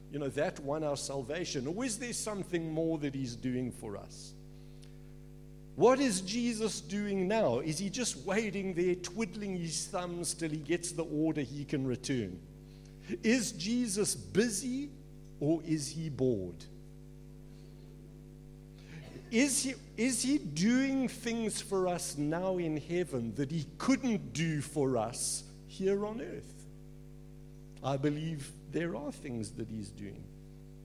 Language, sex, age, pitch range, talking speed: English, male, 60-79, 130-190 Hz, 140 wpm